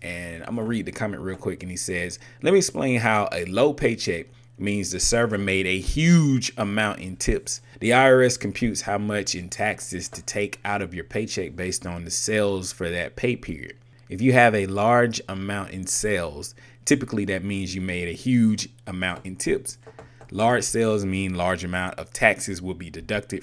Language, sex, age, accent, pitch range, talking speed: English, male, 30-49, American, 95-120 Hz, 195 wpm